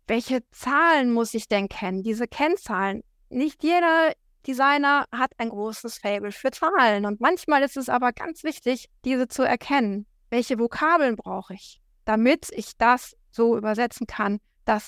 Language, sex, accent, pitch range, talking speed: German, female, German, 215-265 Hz, 155 wpm